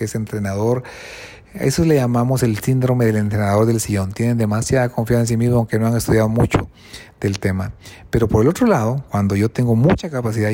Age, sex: 40-59, male